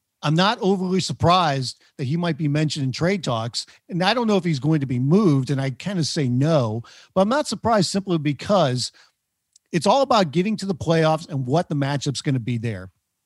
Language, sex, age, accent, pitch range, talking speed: English, male, 50-69, American, 130-170 Hz, 220 wpm